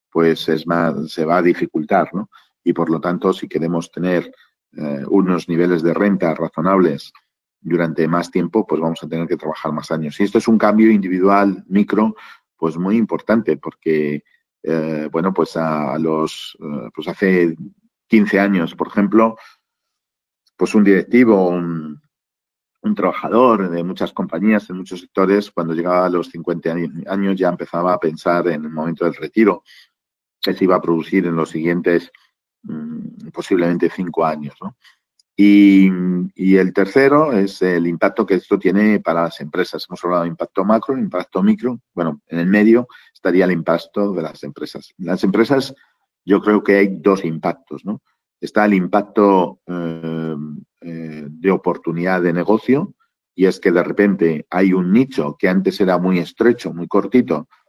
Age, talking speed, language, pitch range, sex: 50-69, 160 wpm, Spanish, 85-100 Hz, male